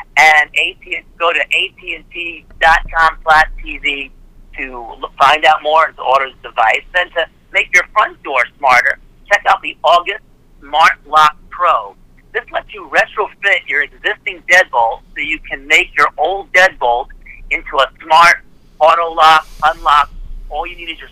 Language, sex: English, male